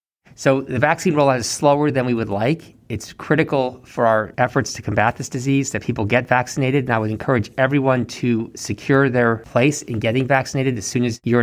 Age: 40-59